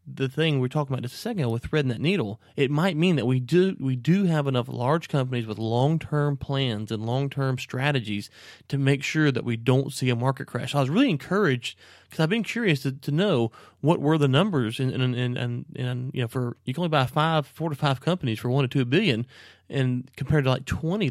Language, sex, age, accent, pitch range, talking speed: English, male, 30-49, American, 125-150 Hz, 240 wpm